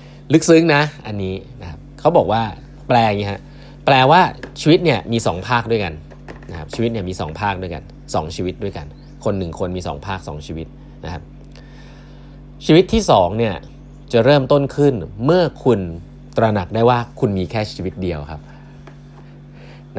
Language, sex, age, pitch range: Thai, male, 20-39, 90-140 Hz